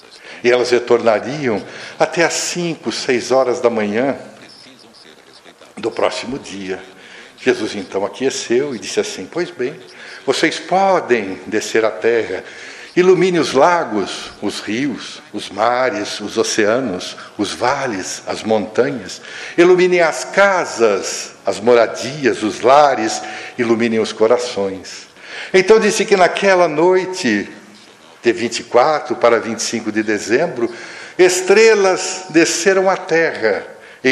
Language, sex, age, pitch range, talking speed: Portuguese, male, 60-79, 115-190 Hz, 115 wpm